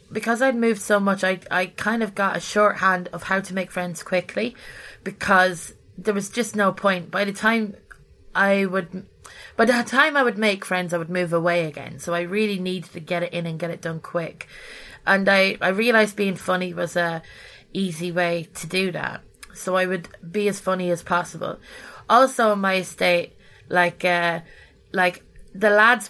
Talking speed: 195 wpm